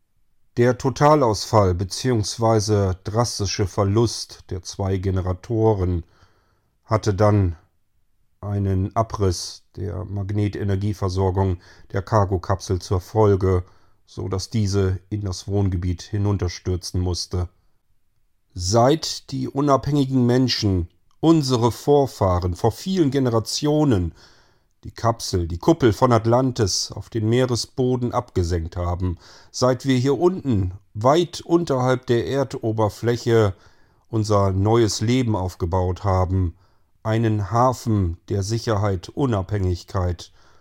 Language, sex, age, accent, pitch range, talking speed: German, male, 40-59, German, 95-115 Hz, 95 wpm